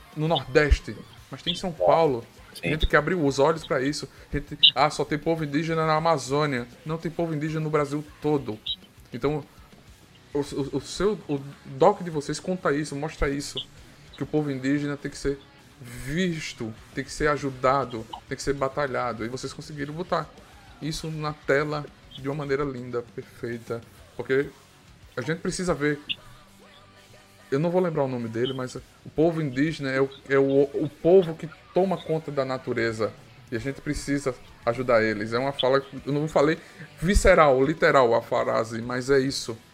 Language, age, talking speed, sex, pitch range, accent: Portuguese, 20-39, 180 wpm, male, 125-155 Hz, Brazilian